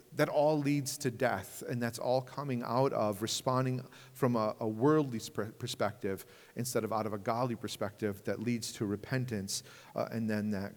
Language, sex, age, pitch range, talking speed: English, male, 40-59, 120-160 Hz, 180 wpm